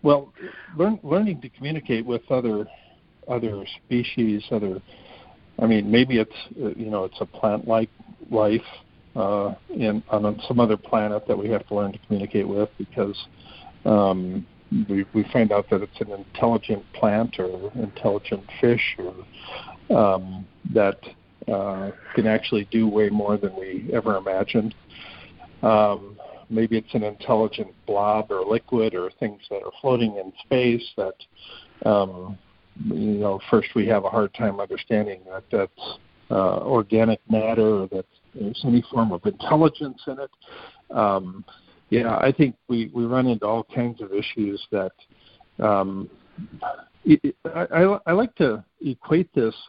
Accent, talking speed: American, 145 wpm